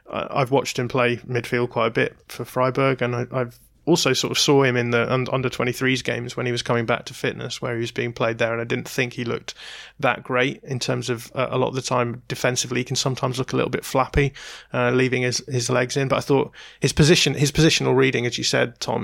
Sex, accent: male, British